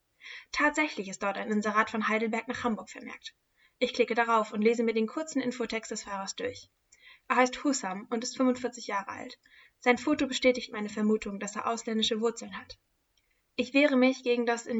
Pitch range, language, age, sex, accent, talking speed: 225-255 Hz, German, 10-29, female, German, 185 wpm